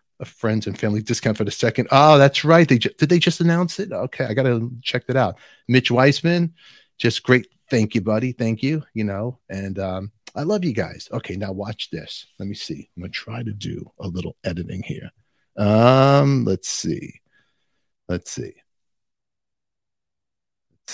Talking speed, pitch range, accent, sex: 180 wpm, 105-155 Hz, American, male